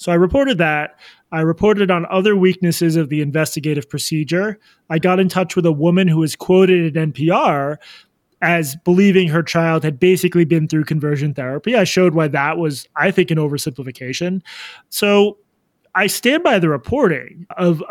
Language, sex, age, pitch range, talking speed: English, male, 20-39, 155-190 Hz, 170 wpm